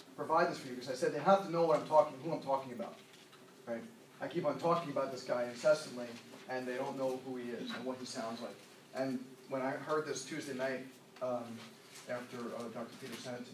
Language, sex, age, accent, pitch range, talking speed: English, male, 40-59, American, 125-145 Hz, 240 wpm